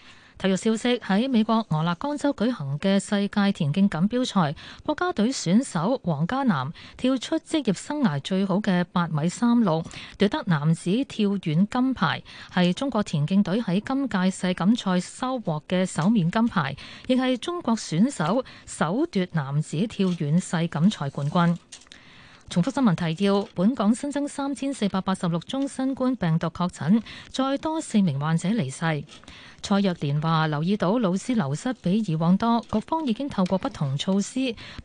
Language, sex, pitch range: Chinese, female, 170-230 Hz